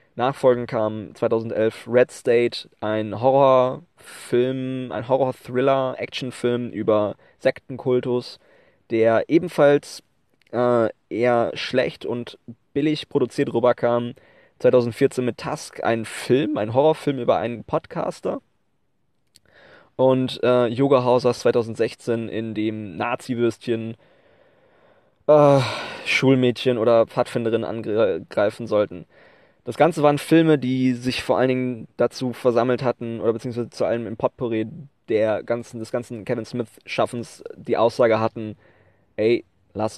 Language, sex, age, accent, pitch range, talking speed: German, male, 20-39, German, 115-130 Hz, 110 wpm